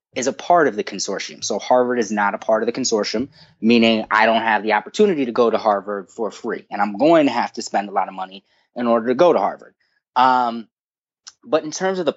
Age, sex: 20-39, male